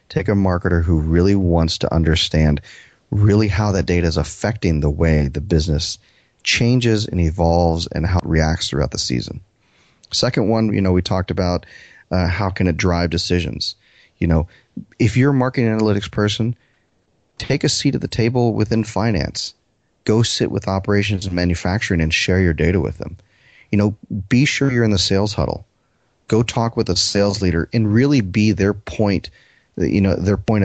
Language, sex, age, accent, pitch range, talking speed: English, male, 30-49, American, 85-110 Hz, 180 wpm